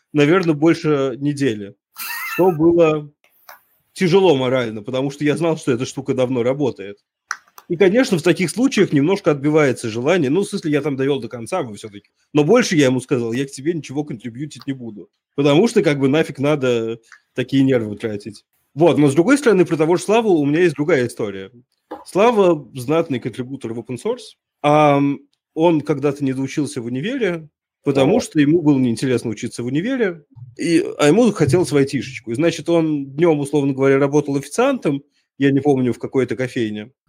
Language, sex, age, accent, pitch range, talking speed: Russian, male, 20-39, native, 125-170 Hz, 175 wpm